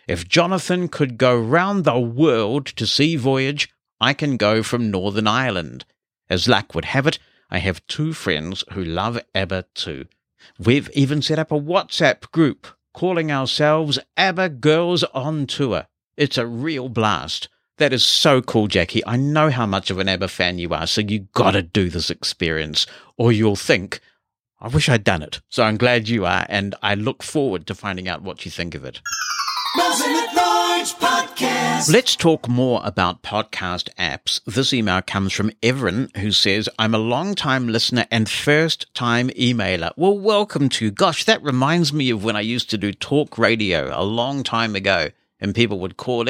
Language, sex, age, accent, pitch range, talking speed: English, male, 50-69, British, 100-150 Hz, 180 wpm